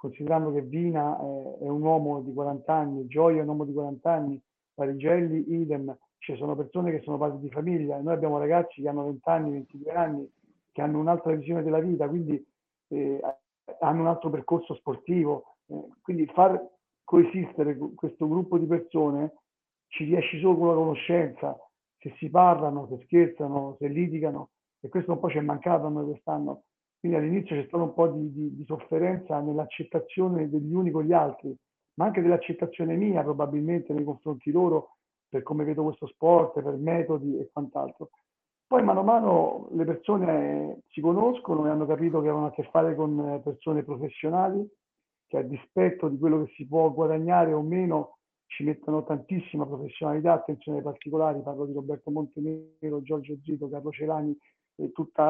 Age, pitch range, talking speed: 50-69, 145-170 Hz, 175 wpm